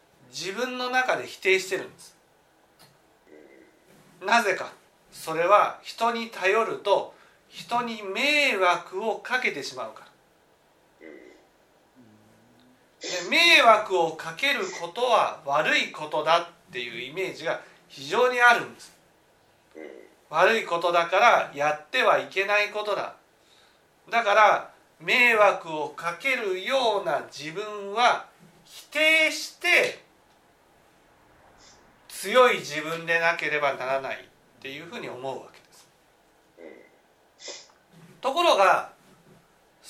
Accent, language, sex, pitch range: native, Japanese, male, 170-245 Hz